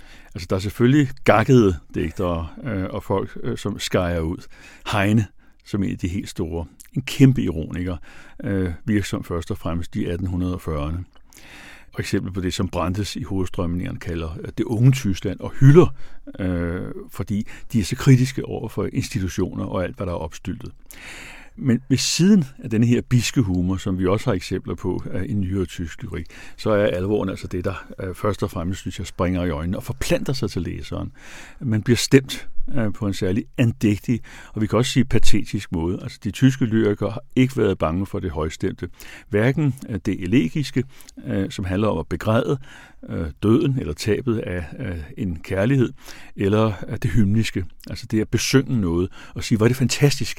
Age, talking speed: 60-79, 175 wpm